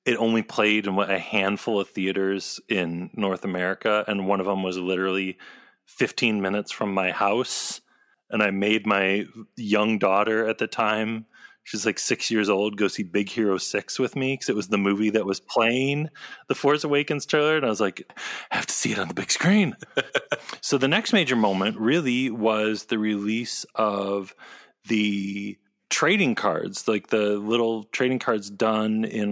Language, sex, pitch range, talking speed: English, male, 100-115 Hz, 180 wpm